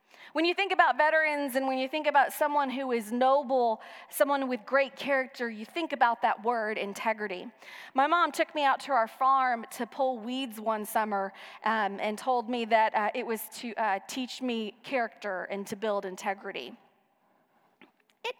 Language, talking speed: English, 180 wpm